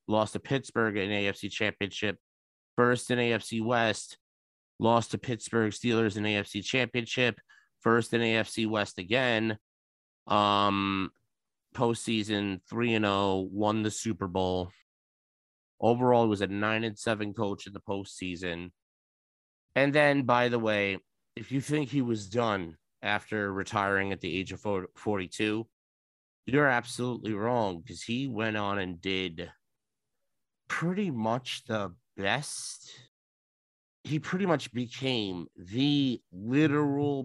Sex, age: male, 30-49